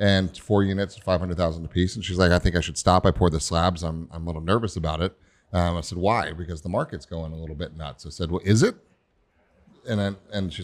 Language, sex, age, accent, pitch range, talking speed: English, male, 30-49, American, 90-110 Hz, 255 wpm